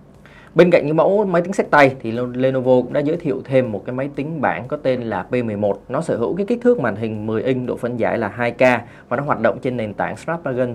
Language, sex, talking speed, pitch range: Vietnamese, male, 260 wpm, 110-140 Hz